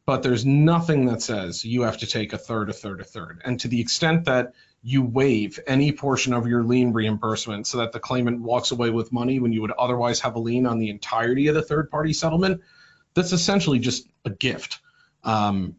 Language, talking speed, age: English, 215 wpm, 40-59